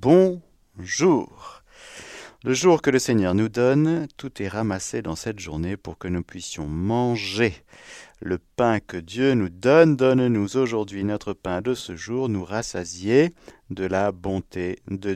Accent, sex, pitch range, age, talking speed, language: French, male, 85-120 Hz, 50-69, 155 wpm, French